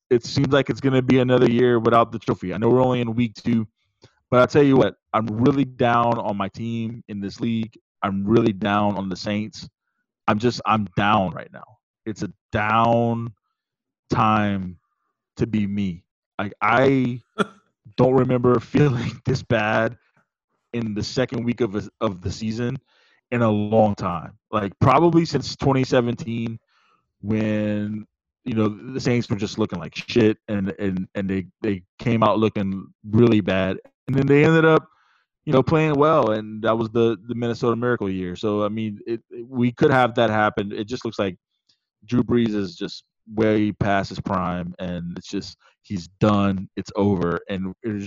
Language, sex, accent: English, male, American